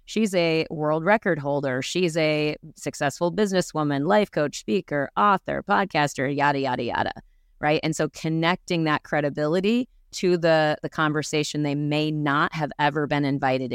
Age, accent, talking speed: 30-49, American, 150 wpm